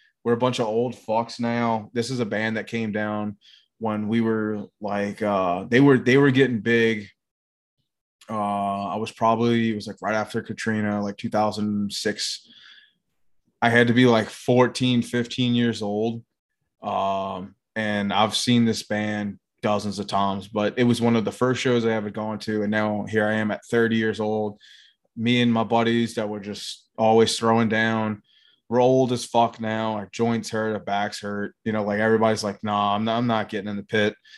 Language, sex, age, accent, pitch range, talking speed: English, male, 20-39, American, 105-115 Hz, 190 wpm